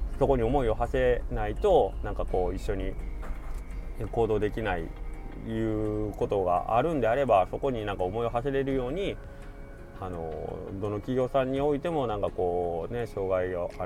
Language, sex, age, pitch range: Japanese, male, 20-39, 95-125 Hz